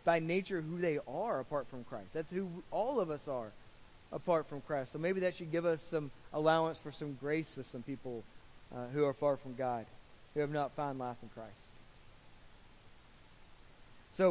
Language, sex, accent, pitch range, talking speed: English, male, American, 160-225 Hz, 190 wpm